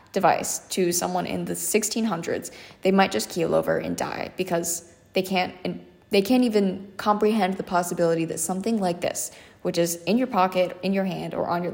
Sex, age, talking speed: female, 10-29, 195 wpm